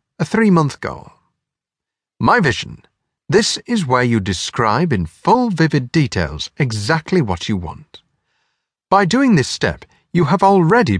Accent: British